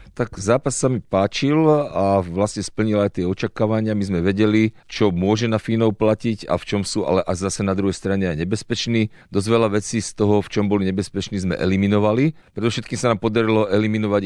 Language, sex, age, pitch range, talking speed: Slovak, male, 40-59, 95-110 Hz, 200 wpm